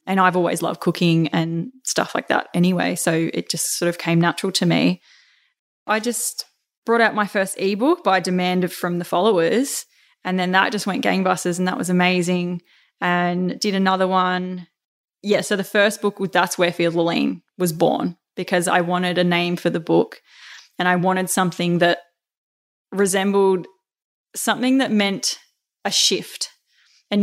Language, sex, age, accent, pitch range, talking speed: English, female, 20-39, Australian, 175-195 Hz, 165 wpm